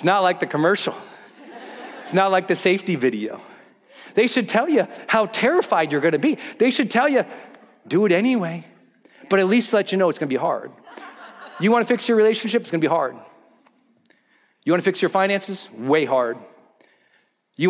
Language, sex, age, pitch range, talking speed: English, male, 40-59, 180-235 Hz, 185 wpm